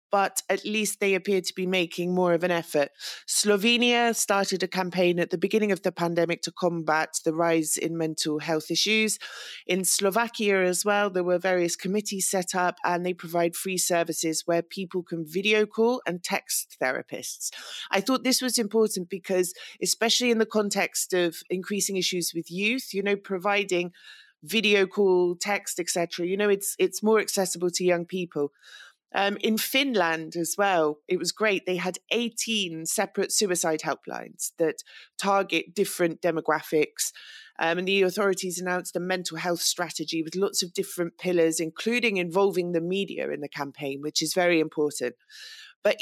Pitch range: 170-210 Hz